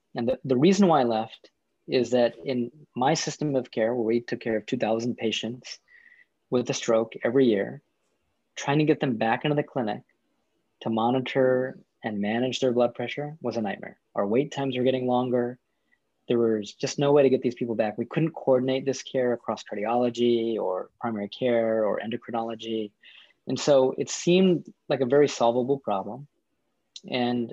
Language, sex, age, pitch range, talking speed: English, male, 20-39, 110-130 Hz, 180 wpm